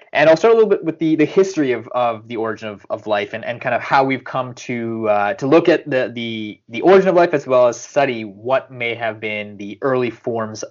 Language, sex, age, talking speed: English, male, 20-39, 260 wpm